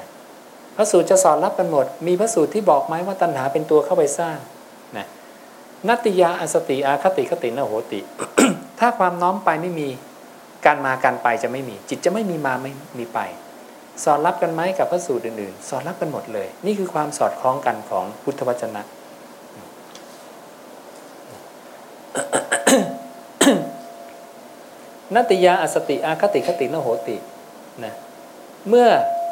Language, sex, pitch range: English, male, 135-185 Hz